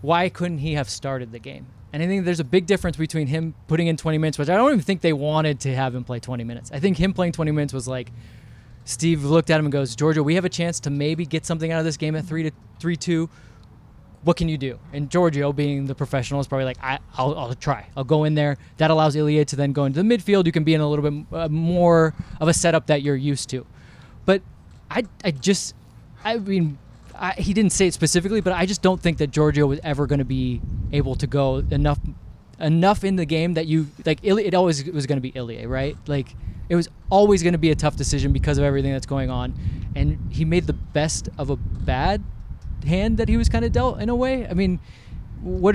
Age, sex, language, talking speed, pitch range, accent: 20-39, male, English, 250 wpm, 135-170 Hz, American